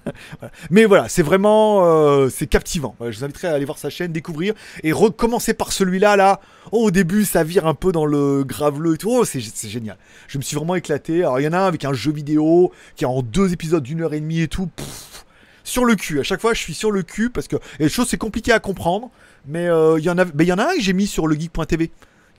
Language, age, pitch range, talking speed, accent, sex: French, 30-49, 145-190 Hz, 270 wpm, French, male